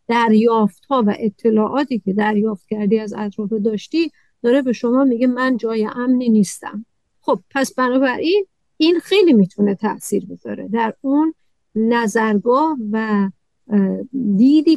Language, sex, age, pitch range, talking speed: Persian, female, 50-69, 205-245 Hz, 125 wpm